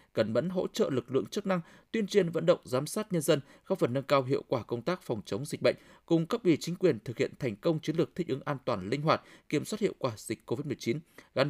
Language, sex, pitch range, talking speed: Vietnamese, male, 130-185 Hz, 270 wpm